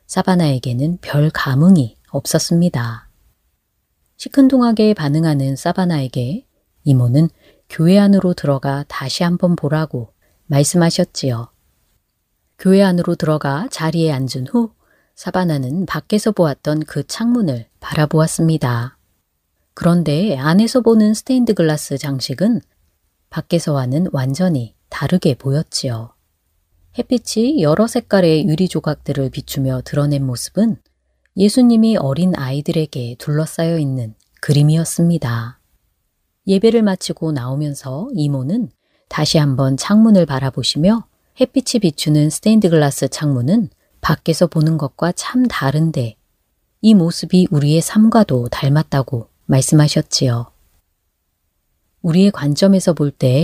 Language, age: Korean, 30-49